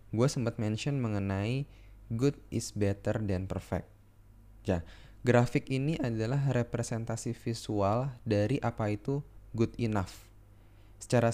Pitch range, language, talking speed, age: 100-125 Hz, Indonesian, 110 wpm, 20-39